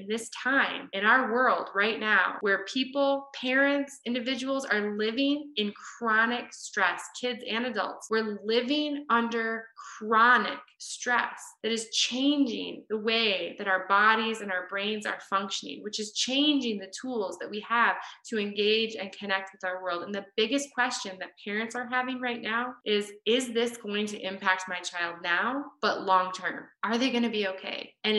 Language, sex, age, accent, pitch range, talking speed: English, female, 20-39, American, 195-235 Hz, 170 wpm